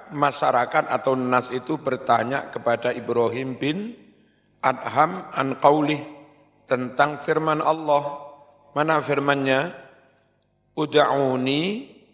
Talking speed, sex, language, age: 85 wpm, male, Indonesian, 50-69